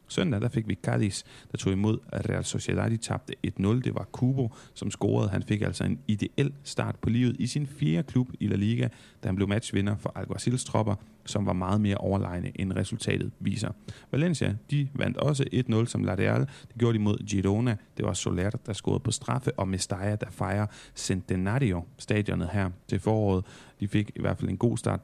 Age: 30-49